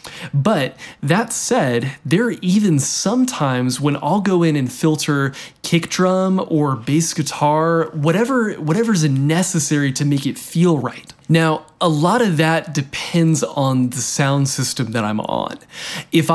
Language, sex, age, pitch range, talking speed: English, male, 20-39, 130-165 Hz, 150 wpm